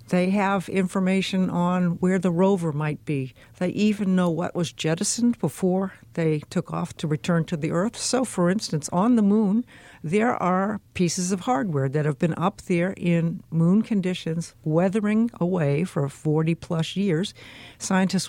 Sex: female